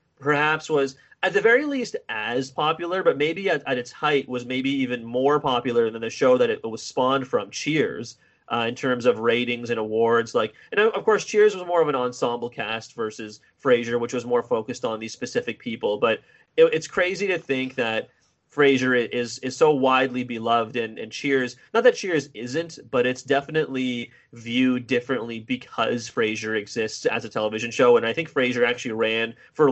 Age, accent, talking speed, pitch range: 30-49, American, 195 wpm, 115-145 Hz